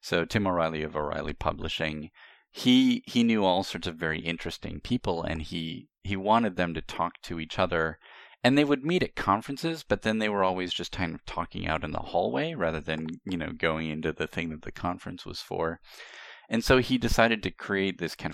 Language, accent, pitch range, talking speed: English, American, 80-105 Hz, 215 wpm